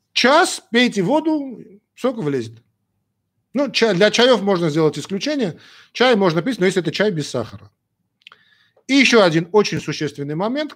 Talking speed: 150 wpm